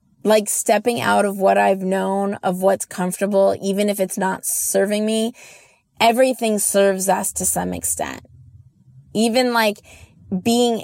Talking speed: 140 wpm